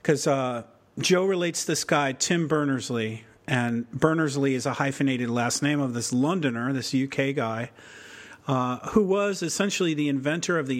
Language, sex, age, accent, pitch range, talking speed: English, male, 40-59, American, 125-155 Hz, 165 wpm